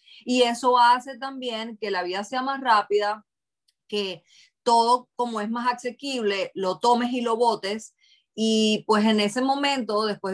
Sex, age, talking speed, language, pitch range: female, 30-49, 155 wpm, English, 200-240 Hz